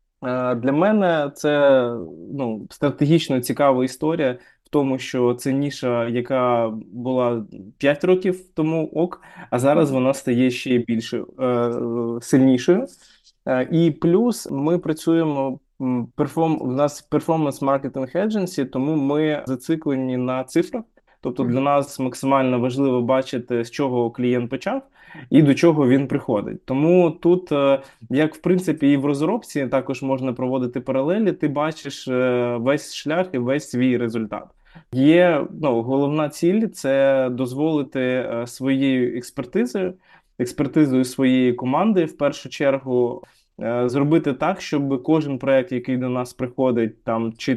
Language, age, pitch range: Ukrainian, 20-39, 125-155 Hz